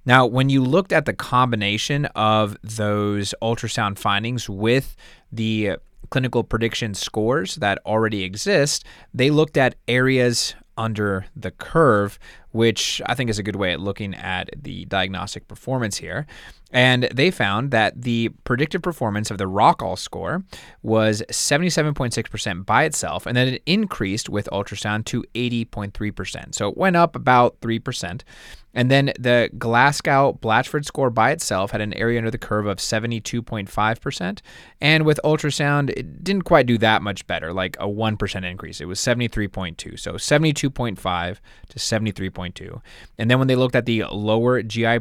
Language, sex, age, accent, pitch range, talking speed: English, male, 20-39, American, 105-130 Hz, 180 wpm